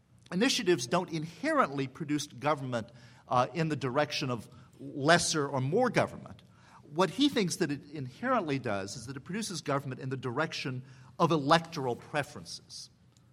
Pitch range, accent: 120-165 Hz, American